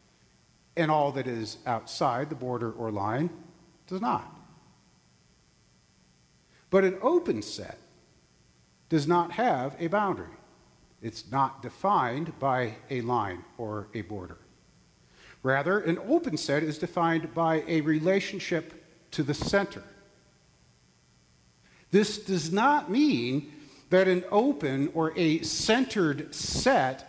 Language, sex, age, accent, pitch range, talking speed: English, male, 50-69, American, 115-175 Hz, 115 wpm